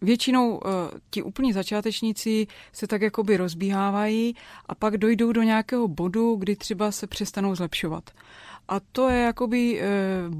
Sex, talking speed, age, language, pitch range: female, 140 wpm, 30-49, Czech, 185-215 Hz